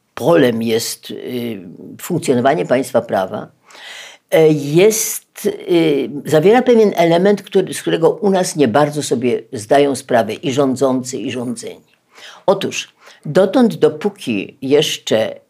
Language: Polish